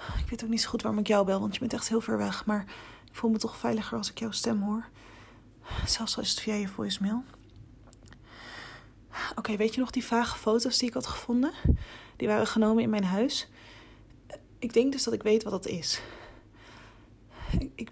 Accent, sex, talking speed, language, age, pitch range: Dutch, female, 210 wpm, Dutch, 30-49, 185-255 Hz